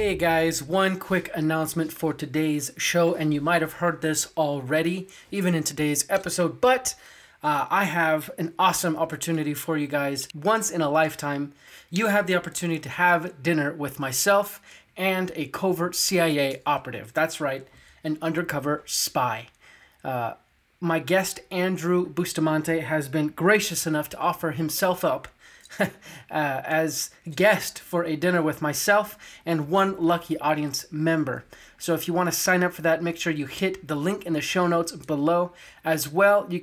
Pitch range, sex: 155-180 Hz, male